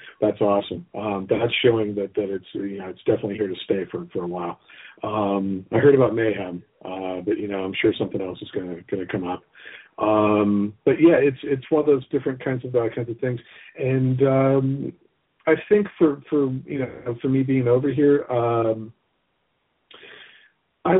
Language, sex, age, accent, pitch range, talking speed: English, male, 50-69, American, 100-120 Hz, 195 wpm